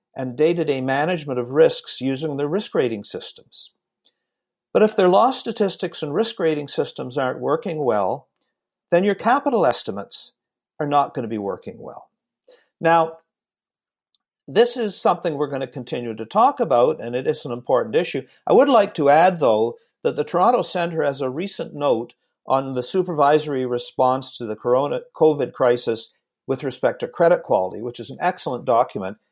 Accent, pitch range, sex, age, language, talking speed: American, 125-195 Hz, male, 50-69, English, 170 wpm